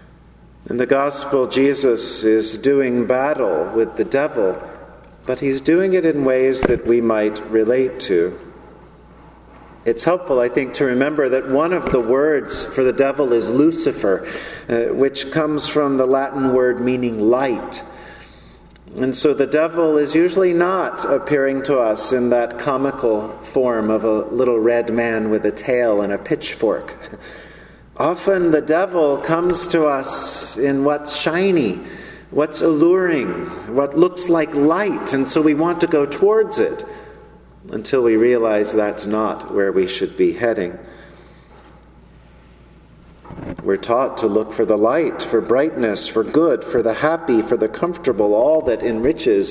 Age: 50-69